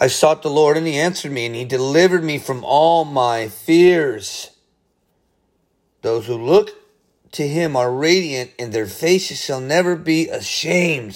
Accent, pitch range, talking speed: American, 120-165 Hz, 160 wpm